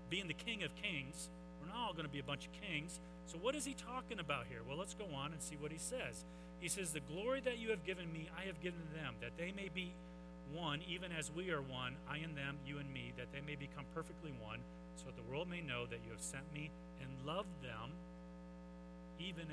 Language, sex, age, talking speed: English, male, 40-59, 250 wpm